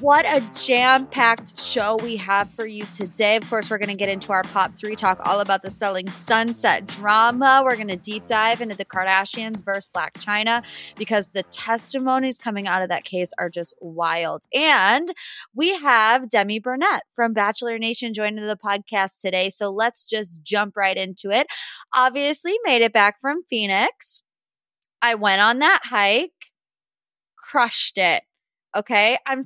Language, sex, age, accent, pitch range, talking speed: English, female, 20-39, American, 190-240 Hz, 170 wpm